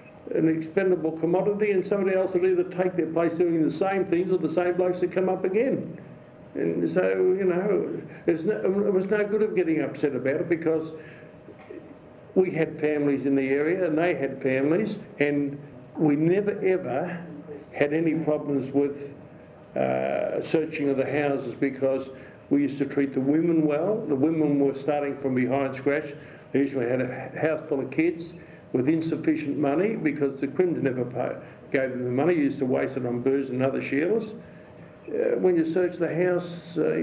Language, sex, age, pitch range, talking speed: English, male, 60-79, 135-165 Hz, 180 wpm